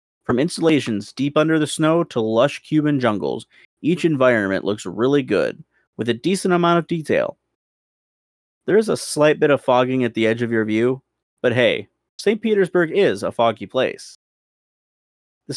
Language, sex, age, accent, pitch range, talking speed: English, male, 30-49, American, 110-165 Hz, 165 wpm